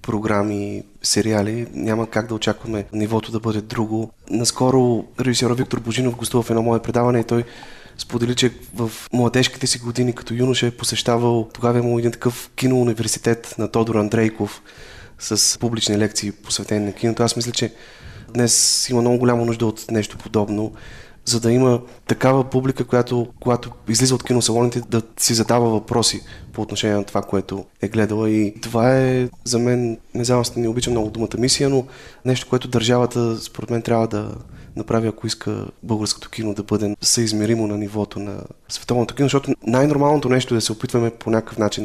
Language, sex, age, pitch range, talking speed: Bulgarian, male, 20-39, 105-120 Hz, 170 wpm